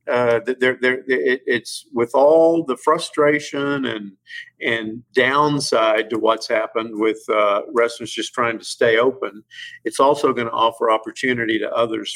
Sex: male